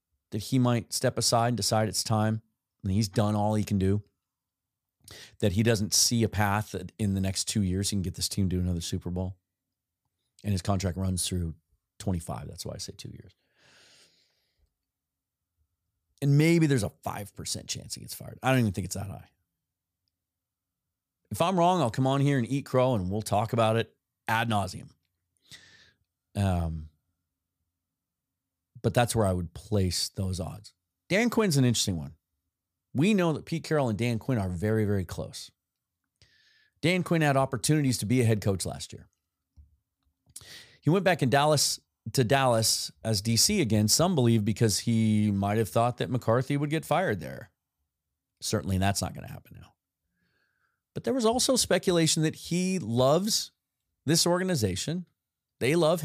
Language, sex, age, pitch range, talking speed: English, male, 30-49, 90-130 Hz, 175 wpm